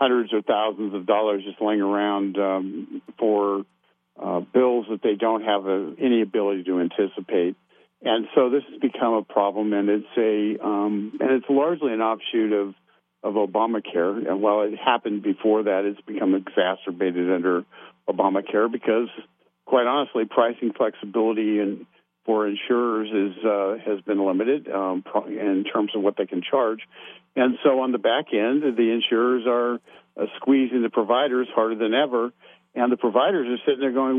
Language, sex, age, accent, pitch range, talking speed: English, male, 50-69, American, 105-130 Hz, 165 wpm